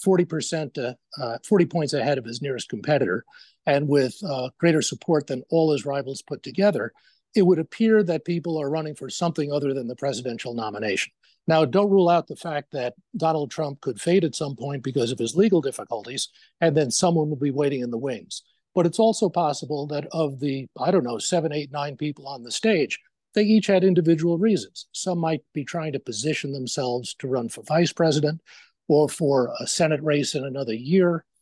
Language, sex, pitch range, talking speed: English, male, 140-175 Hz, 200 wpm